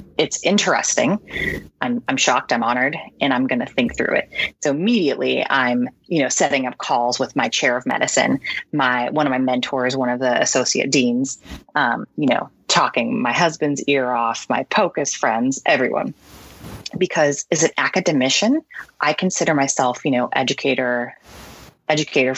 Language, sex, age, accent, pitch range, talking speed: English, female, 30-49, American, 130-195 Hz, 160 wpm